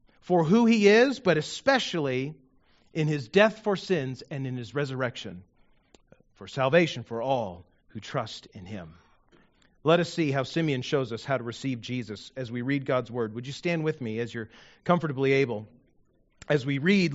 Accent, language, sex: American, English, male